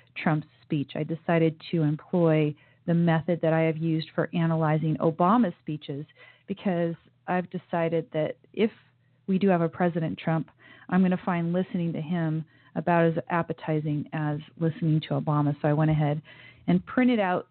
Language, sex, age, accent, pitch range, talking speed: English, female, 40-59, American, 150-175 Hz, 165 wpm